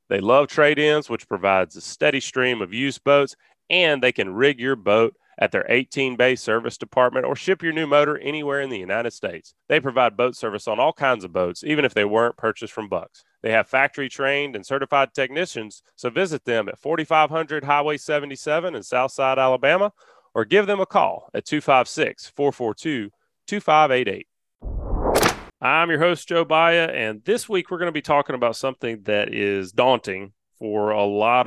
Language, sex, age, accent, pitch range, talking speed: English, male, 30-49, American, 110-145 Hz, 175 wpm